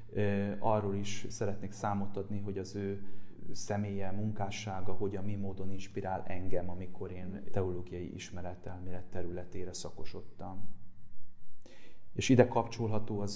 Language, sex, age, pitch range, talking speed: Hungarian, male, 30-49, 95-105 Hz, 115 wpm